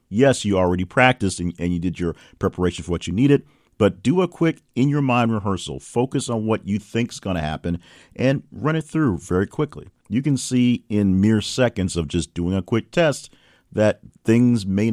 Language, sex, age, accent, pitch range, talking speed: English, male, 50-69, American, 85-115 Hz, 195 wpm